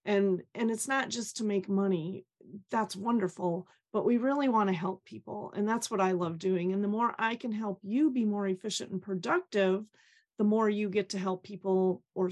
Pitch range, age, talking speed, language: 185-220 Hz, 30-49, 205 wpm, English